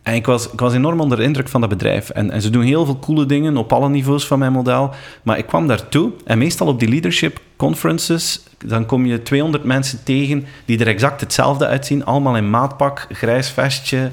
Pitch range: 100-135 Hz